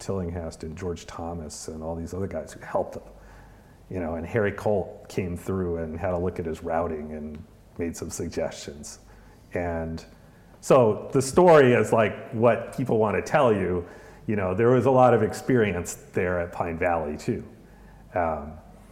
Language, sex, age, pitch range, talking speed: English, male, 50-69, 85-115 Hz, 180 wpm